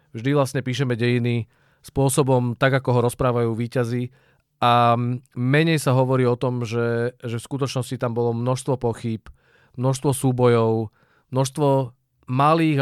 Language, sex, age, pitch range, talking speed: Czech, male, 40-59, 120-140 Hz, 130 wpm